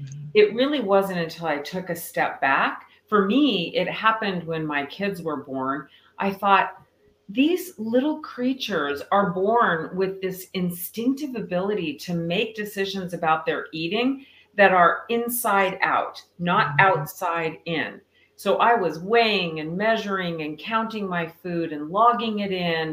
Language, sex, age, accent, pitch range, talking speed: English, female, 40-59, American, 155-210 Hz, 145 wpm